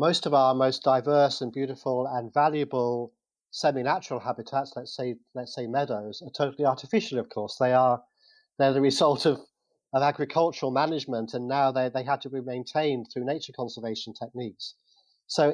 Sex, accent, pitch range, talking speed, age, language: male, British, 125-160 Hz, 165 wpm, 40-59, English